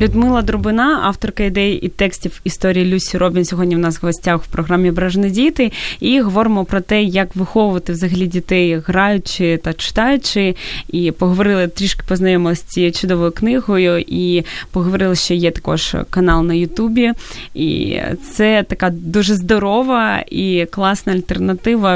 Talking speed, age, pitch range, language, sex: 145 wpm, 20-39, 180-210 Hz, Ukrainian, female